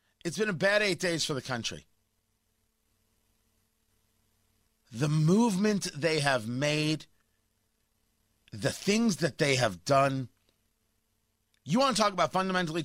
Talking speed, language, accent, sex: 120 wpm, English, American, male